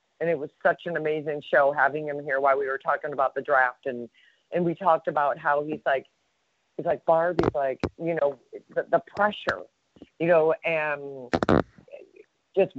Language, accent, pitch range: English, American, 160-205 Hz